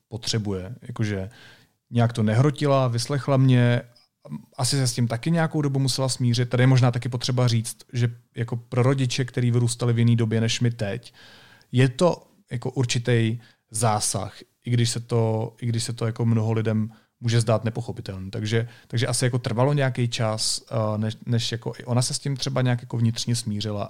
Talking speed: 180 wpm